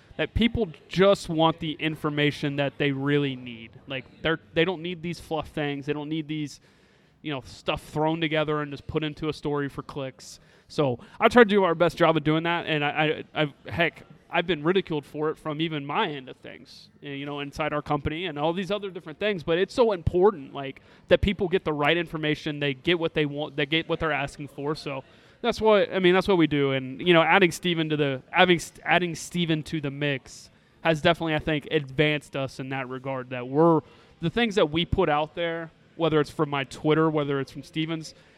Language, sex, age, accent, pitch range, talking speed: English, male, 30-49, American, 145-165 Hz, 225 wpm